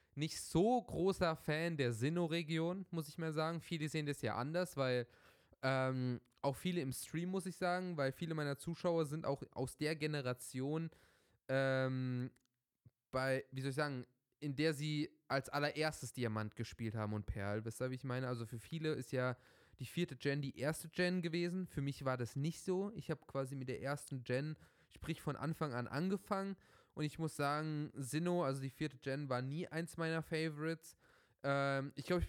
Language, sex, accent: German, male, German